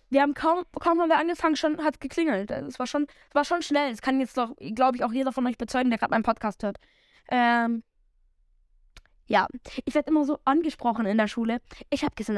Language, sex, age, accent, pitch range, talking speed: German, female, 10-29, German, 210-280 Hz, 225 wpm